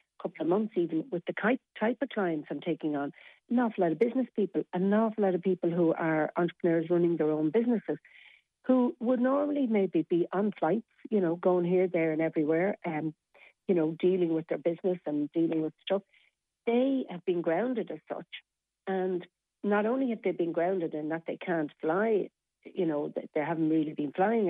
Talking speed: 195 wpm